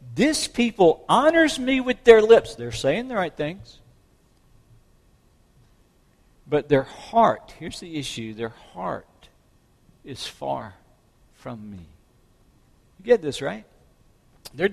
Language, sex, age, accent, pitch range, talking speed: English, male, 60-79, American, 135-220 Hz, 120 wpm